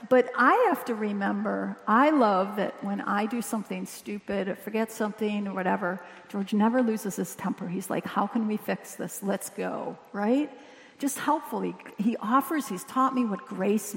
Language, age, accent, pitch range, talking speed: English, 50-69, American, 205-265 Hz, 180 wpm